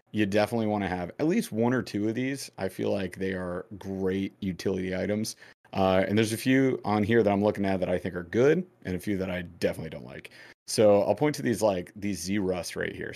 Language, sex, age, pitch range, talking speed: English, male, 30-49, 95-115 Hz, 250 wpm